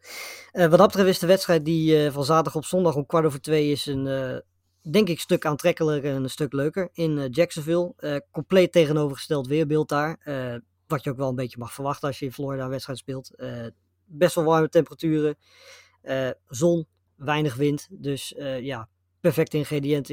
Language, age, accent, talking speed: Dutch, 20-39, Dutch, 195 wpm